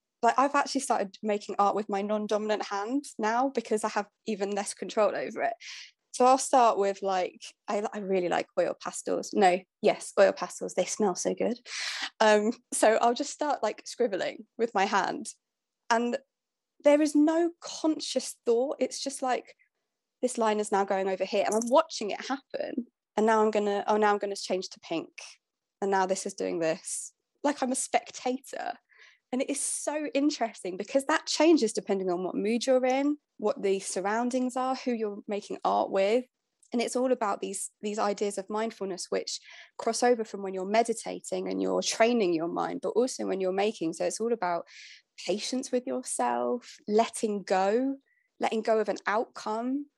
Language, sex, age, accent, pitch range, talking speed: English, female, 20-39, British, 200-265 Hz, 185 wpm